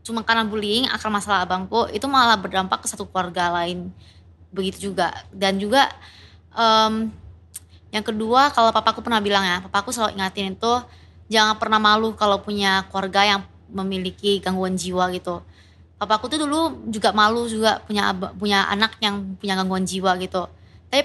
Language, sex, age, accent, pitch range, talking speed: Indonesian, female, 20-39, native, 190-230 Hz, 165 wpm